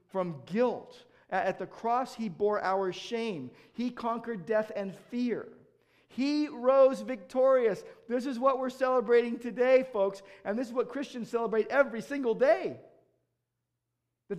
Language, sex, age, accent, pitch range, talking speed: English, male, 50-69, American, 135-225 Hz, 140 wpm